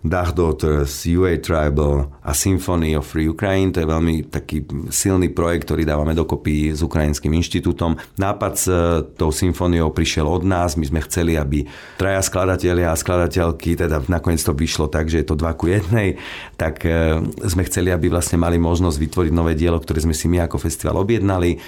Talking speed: 175 wpm